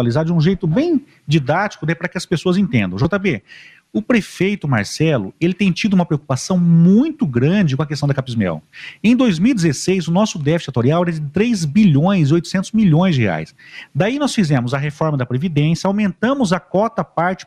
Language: Portuguese